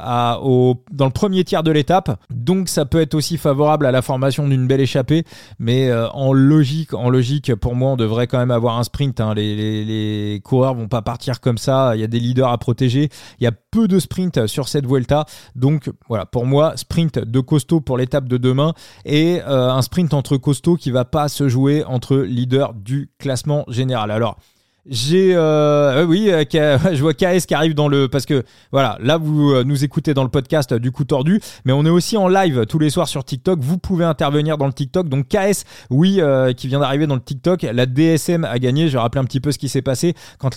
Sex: male